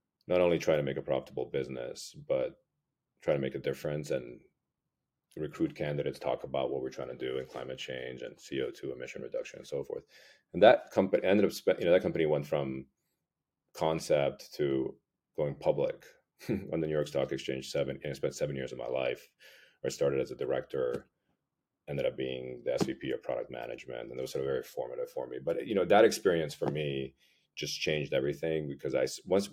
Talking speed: 205 wpm